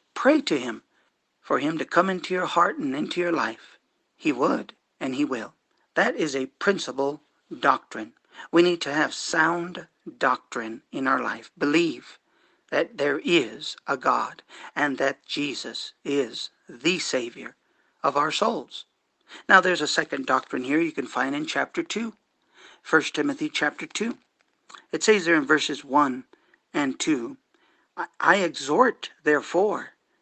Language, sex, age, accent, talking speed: English, male, 50-69, American, 150 wpm